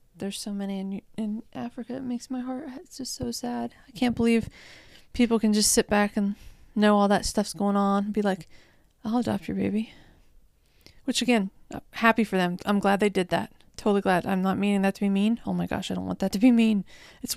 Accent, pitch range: American, 190-220 Hz